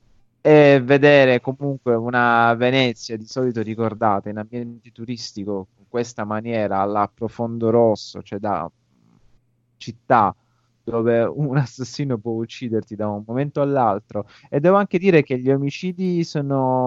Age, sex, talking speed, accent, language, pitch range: 20-39, male, 130 wpm, native, Italian, 105-125 Hz